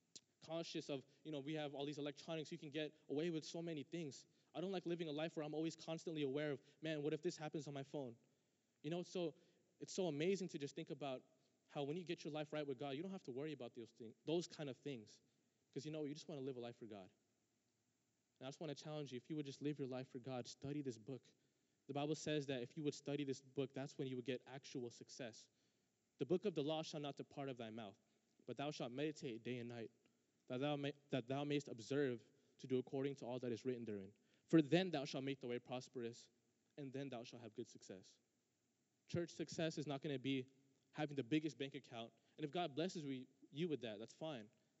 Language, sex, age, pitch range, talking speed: English, male, 20-39, 125-155 Hz, 245 wpm